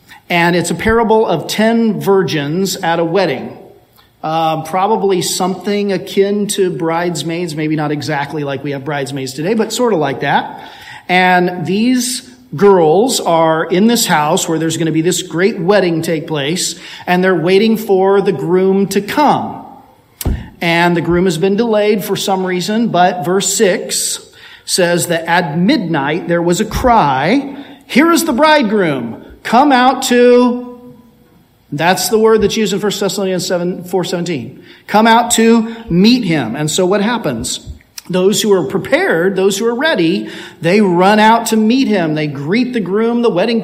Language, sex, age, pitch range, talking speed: English, male, 40-59, 160-210 Hz, 165 wpm